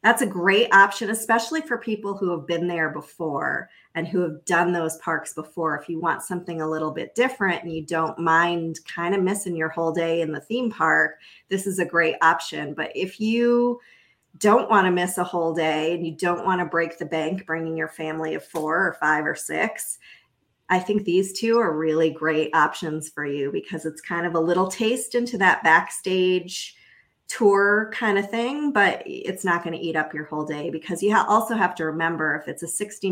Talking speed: 210 wpm